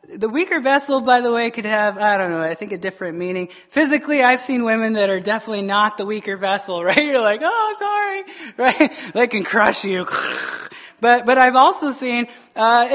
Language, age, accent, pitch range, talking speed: English, 30-49, American, 200-260 Hz, 200 wpm